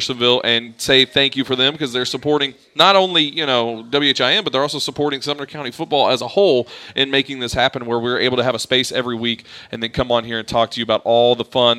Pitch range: 120-145 Hz